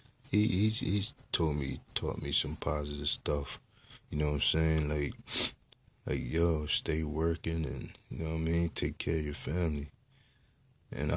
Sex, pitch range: male, 75-95 Hz